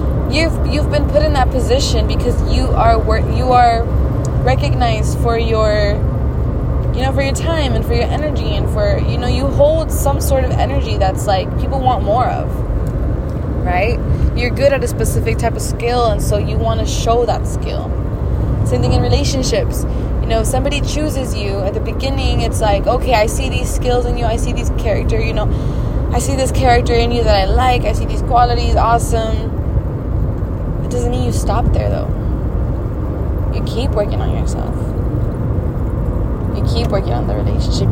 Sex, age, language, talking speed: female, 20-39, English, 185 wpm